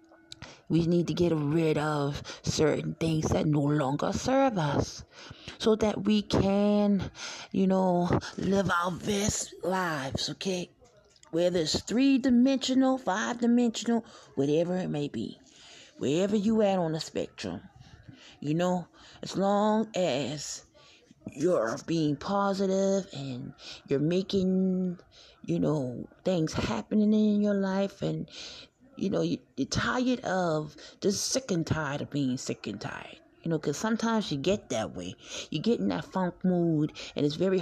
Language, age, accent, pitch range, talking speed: English, 30-49, American, 150-200 Hz, 140 wpm